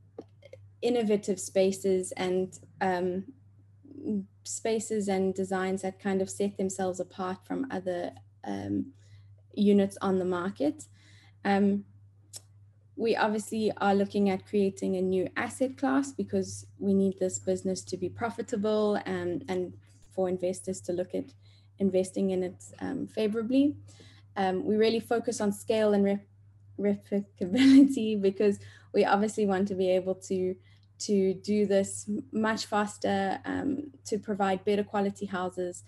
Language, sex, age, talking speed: English, female, 20-39, 130 wpm